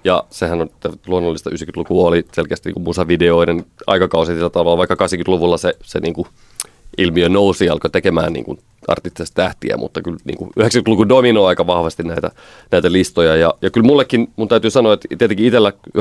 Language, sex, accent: Finnish, male, native